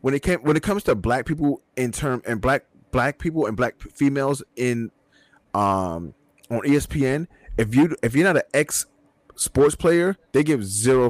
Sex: male